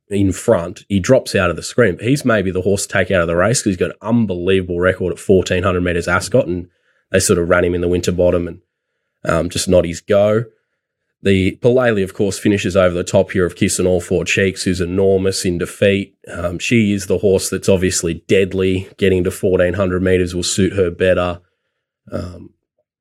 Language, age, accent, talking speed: English, 20-39, Australian, 205 wpm